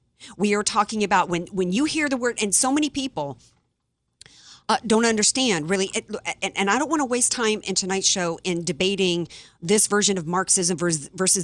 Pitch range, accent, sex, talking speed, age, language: 185-240 Hz, American, female, 200 wpm, 50-69, English